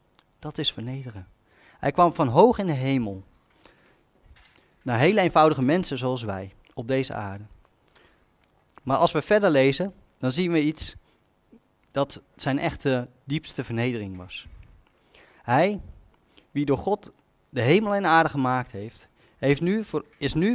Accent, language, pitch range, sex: Dutch, Dutch, 120-175 Hz, male